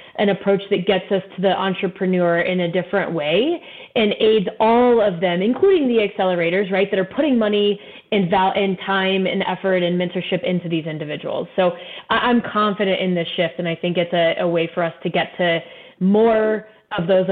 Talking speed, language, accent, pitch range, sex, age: 190 wpm, English, American, 180-210 Hz, female, 20-39